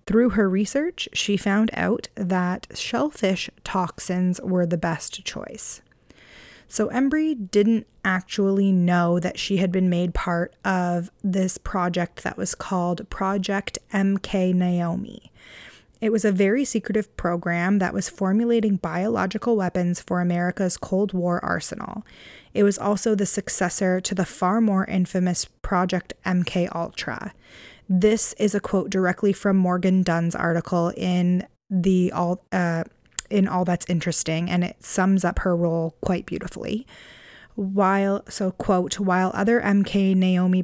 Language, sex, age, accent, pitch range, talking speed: English, female, 20-39, American, 175-205 Hz, 135 wpm